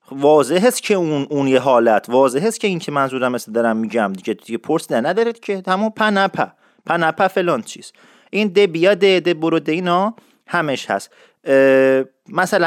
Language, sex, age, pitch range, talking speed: English, male, 40-59, 155-210 Hz, 190 wpm